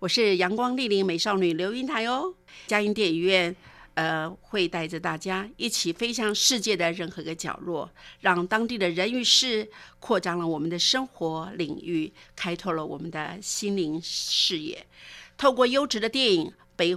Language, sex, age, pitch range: Chinese, female, 50-69, 165-215 Hz